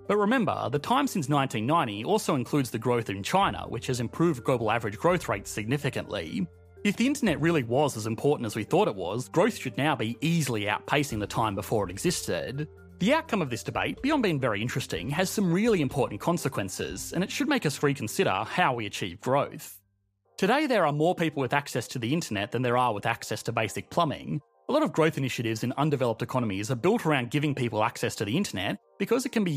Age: 30-49